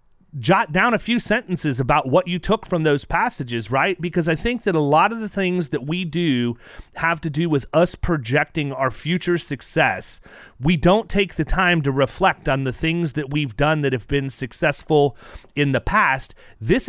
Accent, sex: American, male